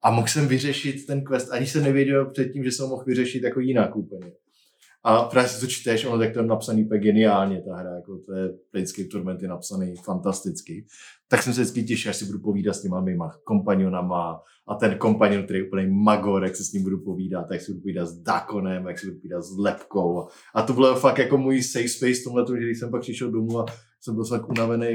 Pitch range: 105-130 Hz